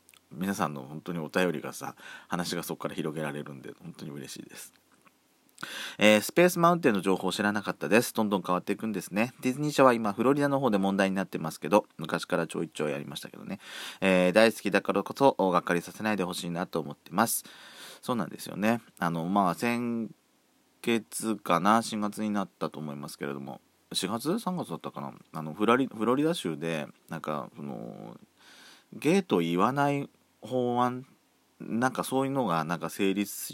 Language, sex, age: Japanese, male, 40-59